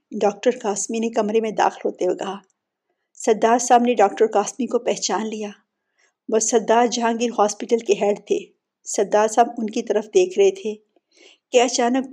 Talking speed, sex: 165 wpm, female